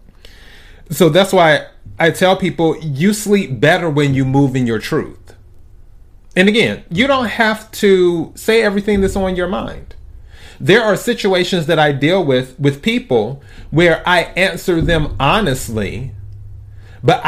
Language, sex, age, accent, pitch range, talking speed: English, male, 30-49, American, 100-170 Hz, 145 wpm